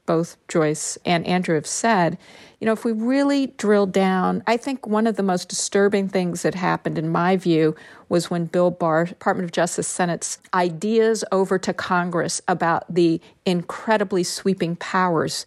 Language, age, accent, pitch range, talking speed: English, 50-69, American, 170-210 Hz, 170 wpm